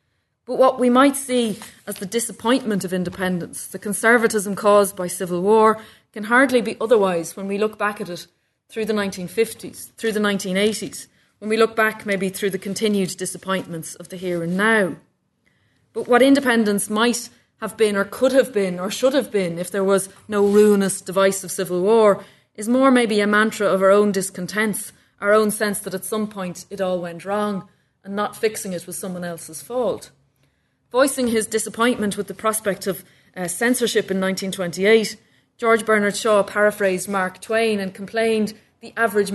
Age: 30-49